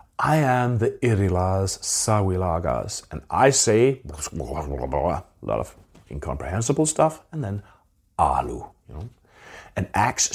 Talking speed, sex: 115 wpm, male